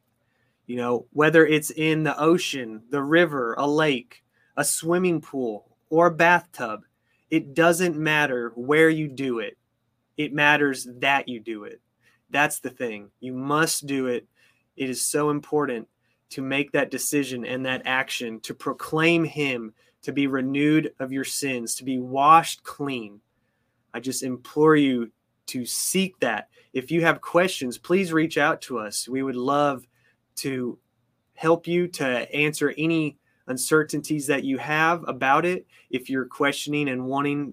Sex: male